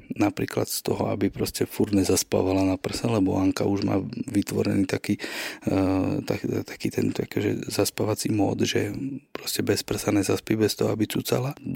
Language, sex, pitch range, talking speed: Slovak, male, 100-135 Hz, 150 wpm